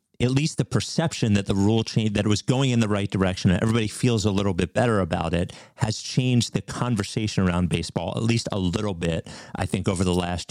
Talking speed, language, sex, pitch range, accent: 235 wpm, English, male, 90-115 Hz, American